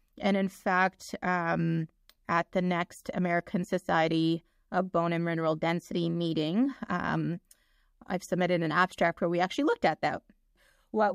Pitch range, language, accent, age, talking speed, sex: 170-200 Hz, English, American, 30-49, 145 wpm, female